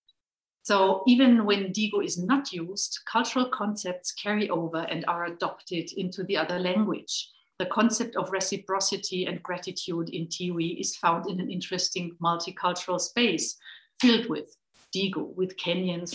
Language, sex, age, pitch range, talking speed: English, female, 50-69, 170-215 Hz, 140 wpm